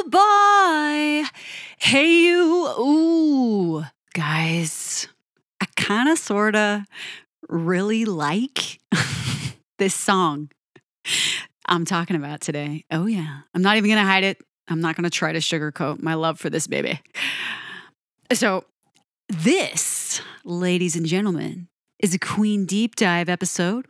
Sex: female